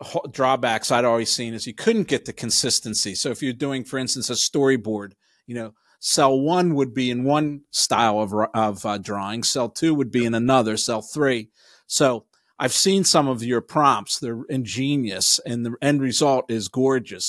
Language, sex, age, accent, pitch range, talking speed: English, male, 40-59, American, 115-140 Hz, 185 wpm